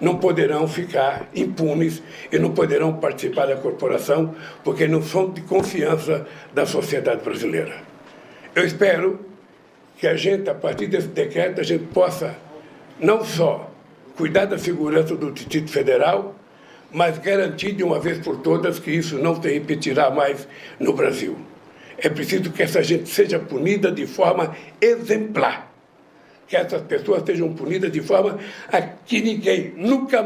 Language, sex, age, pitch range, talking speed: Portuguese, male, 60-79, 175-220 Hz, 145 wpm